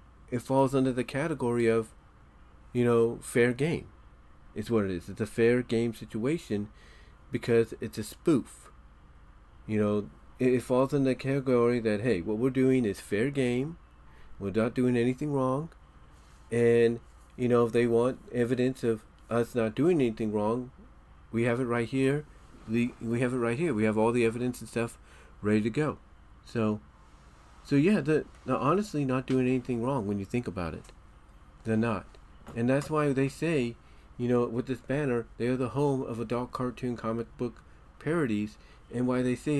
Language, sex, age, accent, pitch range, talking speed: English, male, 40-59, American, 105-130 Hz, 175 wpm